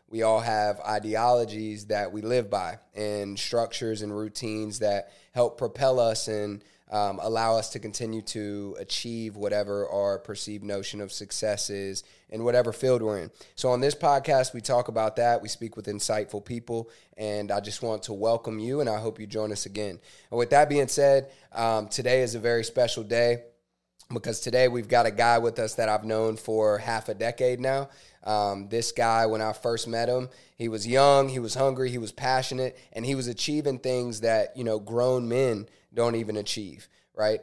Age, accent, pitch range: 20-39, American, 105-120 Hz